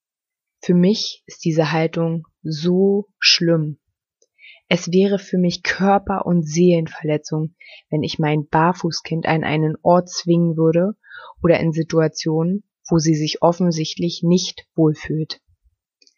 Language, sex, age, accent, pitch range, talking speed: German, female, 20-39, German, 160-200 Hz, 120 wpm